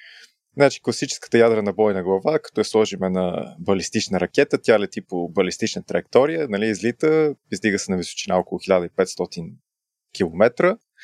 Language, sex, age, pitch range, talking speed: Bulgarian, male, 20-39, 100-135 Hz, 135 wpm